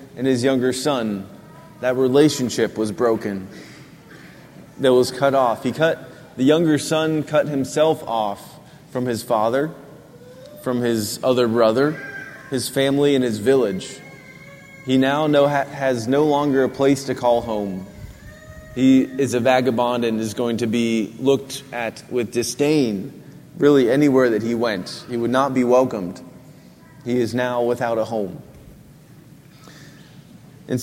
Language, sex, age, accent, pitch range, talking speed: English, male, 20-39, American, 120-145 Hz, 145 wpm